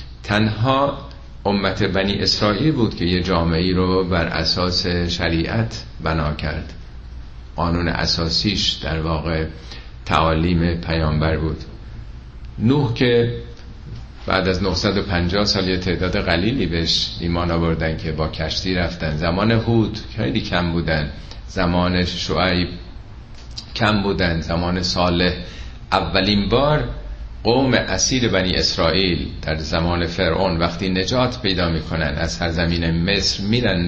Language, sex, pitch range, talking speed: Persian, male, 80-100 Hz, 120 wpm